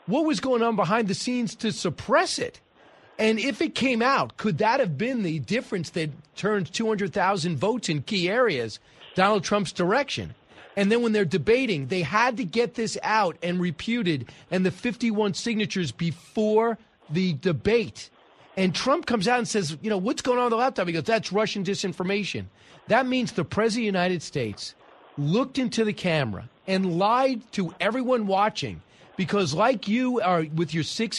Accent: American